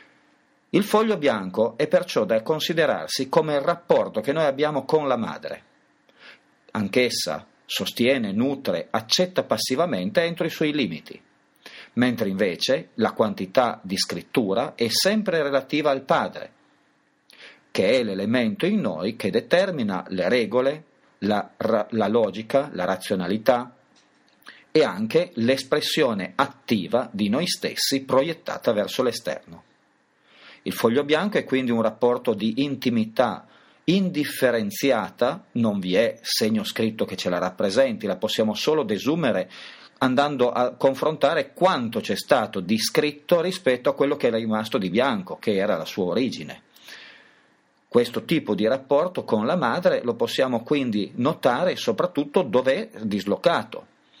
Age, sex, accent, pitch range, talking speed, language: 40-59, male, native, 125-175 Hz, 130 wpm, Italian